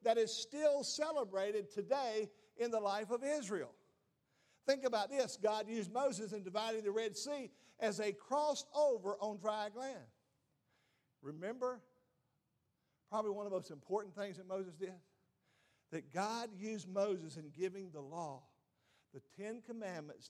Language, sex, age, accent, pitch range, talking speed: English, male, 50-69, American, 140-215 Hz, 150 wpm